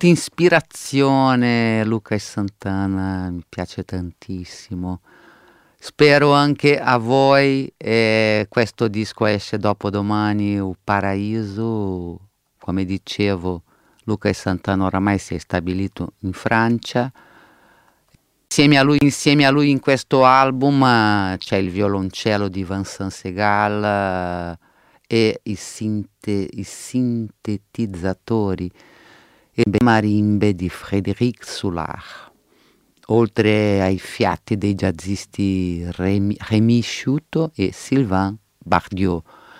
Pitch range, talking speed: 95-115 Hz, 95 wpm